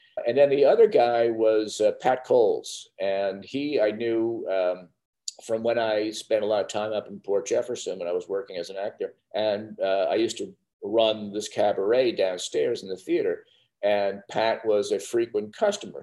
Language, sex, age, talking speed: English, male, 50-69, 190 wpm